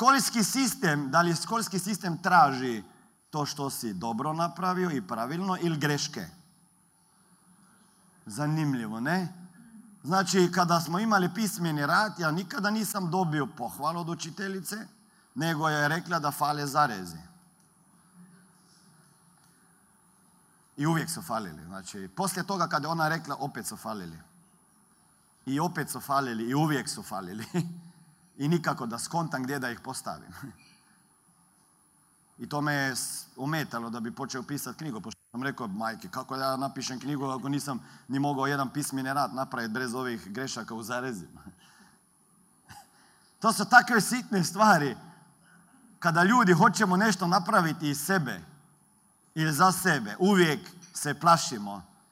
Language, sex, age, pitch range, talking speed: Croatian, male, 40-59, 140-185 Hz, 135 wpm